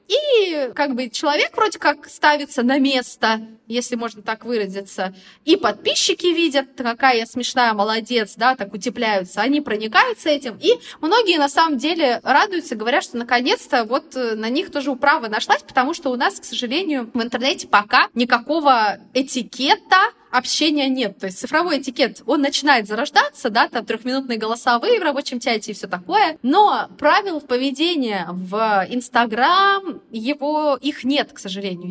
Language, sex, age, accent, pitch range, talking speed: Russian, female, 20-39, native, 225-305 Hz, 150 wpm